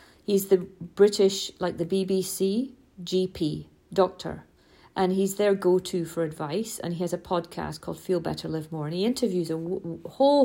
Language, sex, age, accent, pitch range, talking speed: English, female, 40-59, British, 185-235 Hz, 165 wpm